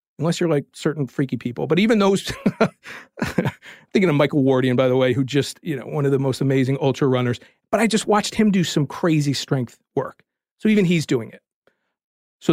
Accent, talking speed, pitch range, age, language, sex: American, 205 wpm, 145-205 Hz, 40-59, English, male